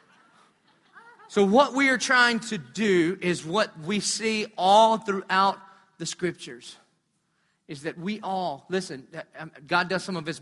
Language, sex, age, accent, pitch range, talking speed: English, male, 40-59, American, 150-200 Hz, 145 wpm